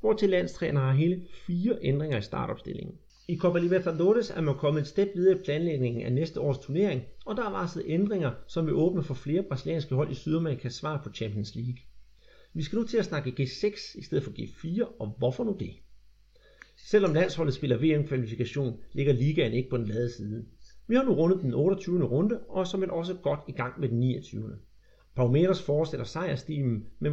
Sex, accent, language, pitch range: male, native, Danish, 125-170 Hz